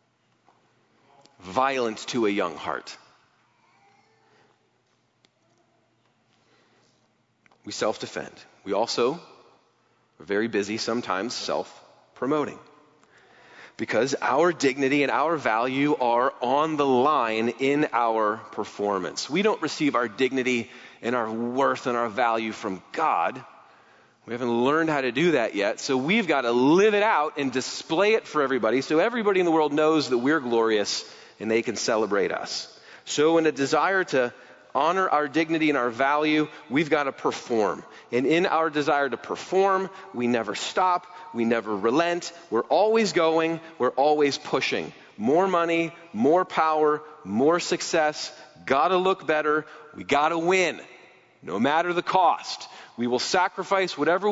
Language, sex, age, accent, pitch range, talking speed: English, male, 30-49, American, 120-175 Hz, 140 wpm